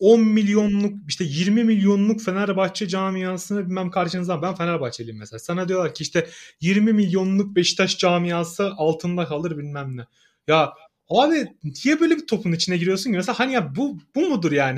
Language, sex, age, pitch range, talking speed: Turkish, male, 30-49, 165-245 Hz, 155 wpm